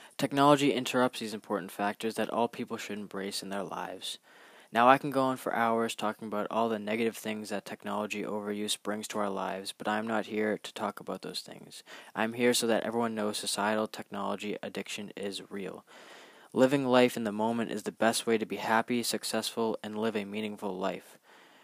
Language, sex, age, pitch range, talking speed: English, male, 20-39, 105-125 Hz, 200 wpm